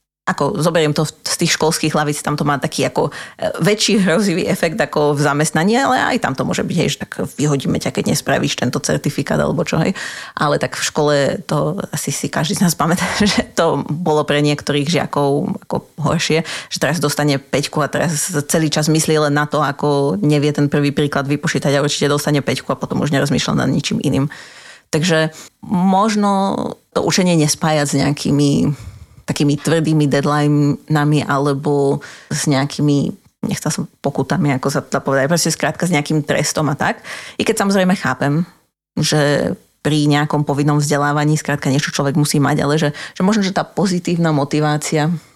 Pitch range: 145-165 Hz